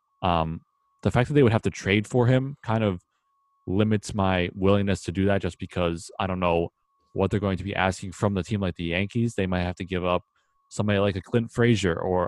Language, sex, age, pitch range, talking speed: English, male, 20-39, 90-110 Hz, 235 wpm